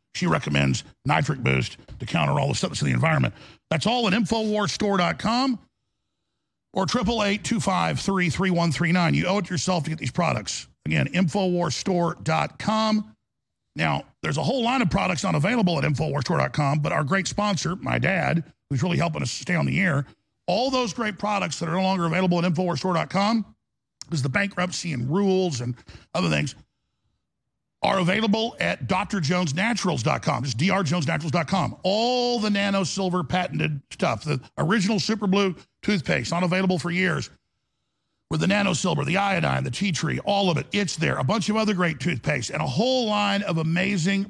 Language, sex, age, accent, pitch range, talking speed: English, male, 50-69, American, 155-200 Hz, 165 wpm